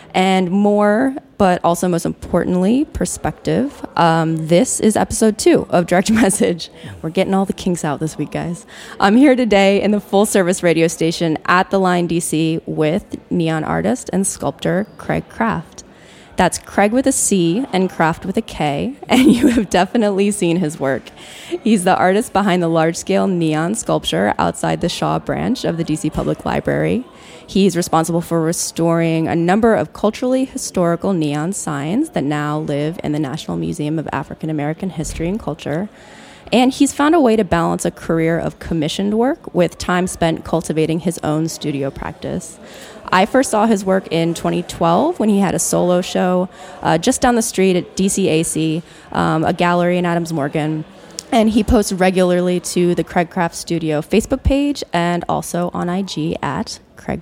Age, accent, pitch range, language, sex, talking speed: 20-39, American, 160-205 Hz, English, female, 170 wpm